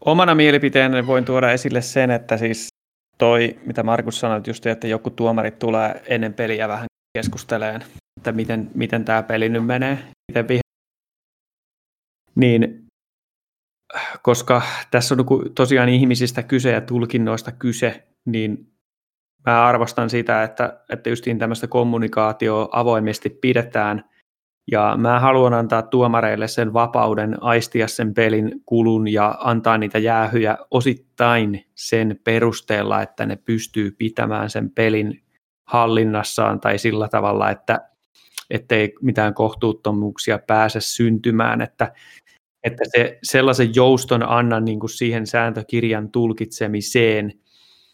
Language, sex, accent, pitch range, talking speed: Finnish, male, native, 110-120 Hz, 115 wpm